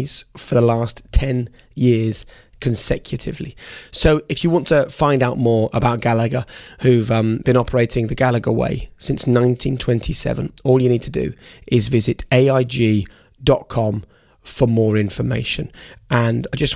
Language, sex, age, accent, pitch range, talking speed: English, male, 20-39, British, 115-130 Hz, 140 wpm